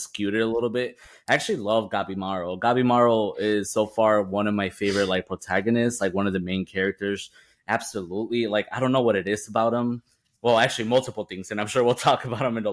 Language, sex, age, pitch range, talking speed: English, male, 20-39, 100-115 Hz, 235 wpm